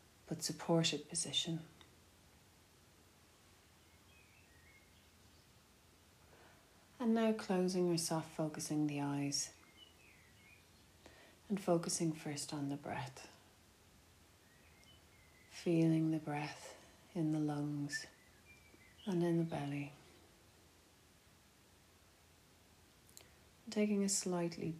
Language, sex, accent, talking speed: English, female, Irish, 75 wpm